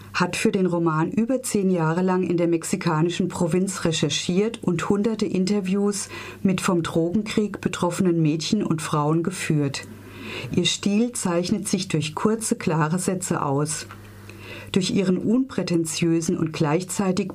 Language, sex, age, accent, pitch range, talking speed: German, female, 40-59, German, 160-200 Hz, 130 wpm